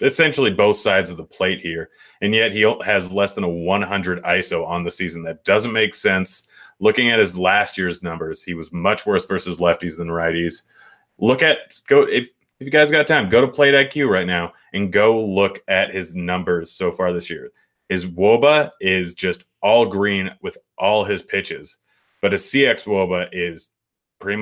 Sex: male